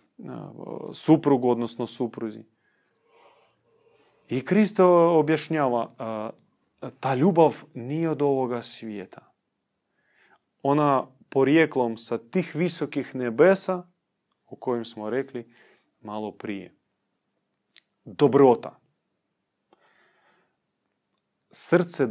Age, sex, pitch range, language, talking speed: 30-49, male, 115-175 Hz, Croatian, 70 wpm